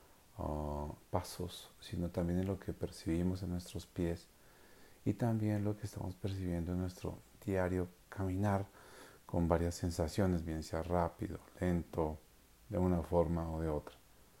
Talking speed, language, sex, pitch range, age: 140 wpm, Spanish, male, 85-110 Hz, 40-59